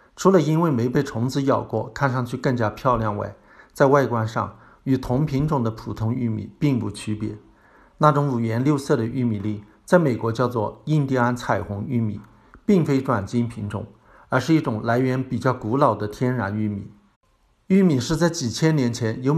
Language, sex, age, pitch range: Chinese, male, 50-69, 110-140 Hz